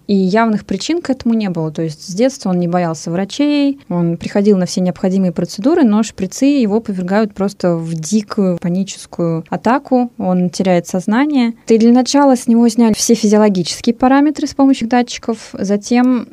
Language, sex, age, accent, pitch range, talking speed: Russian, female, 20-39, native, 180-225 Hz, 170 wpm